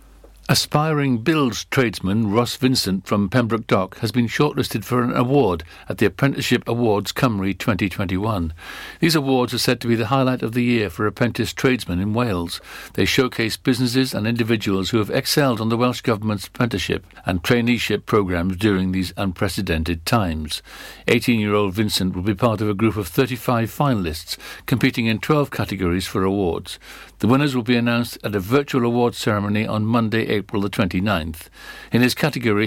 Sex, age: male, 60-79